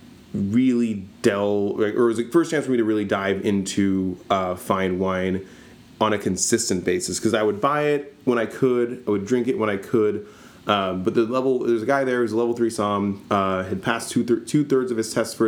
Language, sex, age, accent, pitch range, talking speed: English, male, 30-49, American, 100-115 Hz, 235 wpm